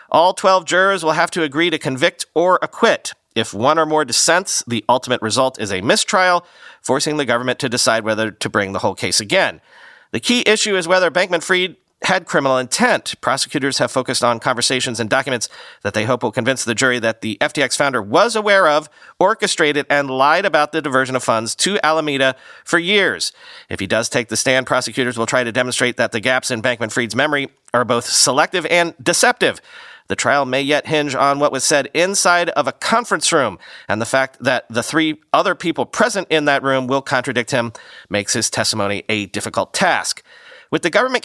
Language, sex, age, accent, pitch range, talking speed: English, male, 40-59, American, 125-175 Hz, 200 wpm